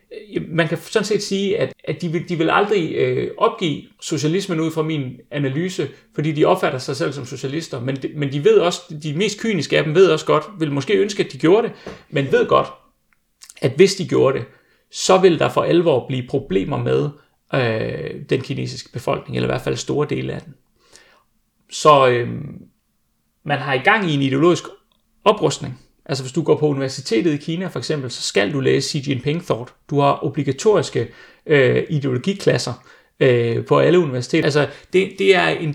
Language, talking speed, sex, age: Danish, 185 wpm, male, 30-49